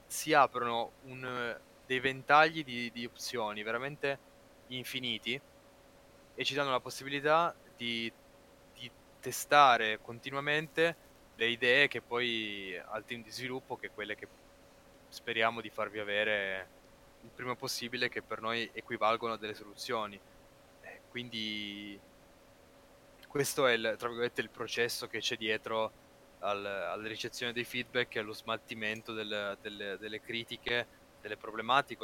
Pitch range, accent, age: 110-125 Hz, native, 20-39